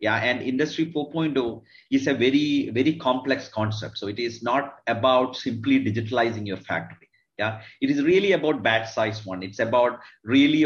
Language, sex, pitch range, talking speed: English, male, 115-150 Hz, 170 wpm